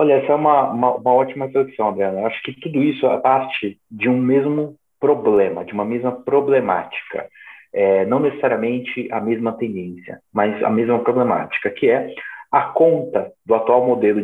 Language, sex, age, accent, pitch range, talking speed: Portuguese, male, 30-49, Brazilian, 115-170 Hz, 165 wpm